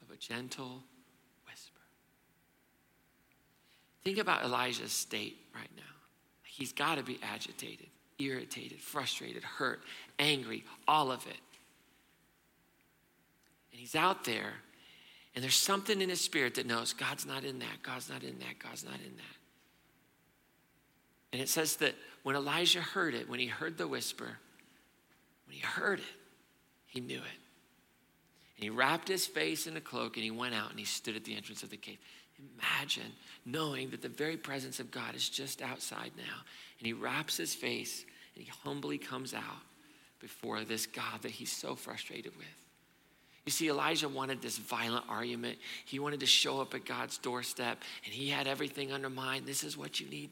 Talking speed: 170 wpm